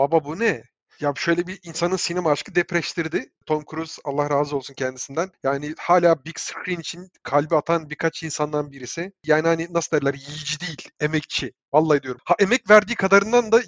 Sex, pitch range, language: male, 155-200 Hz, Turkish